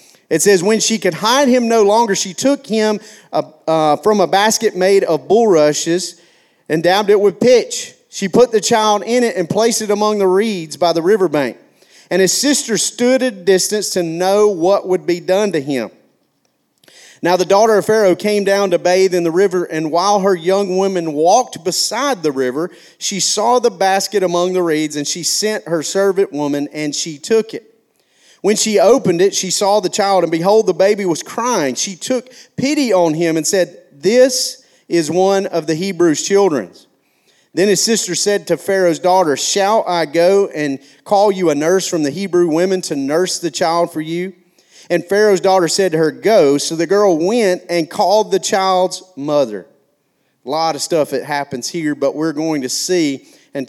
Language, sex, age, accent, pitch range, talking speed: English, male, 40-59, American, 160-205 Hz, 195 wpm